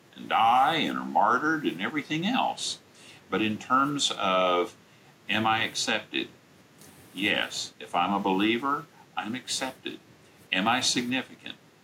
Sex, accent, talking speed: male, American, 125 wpm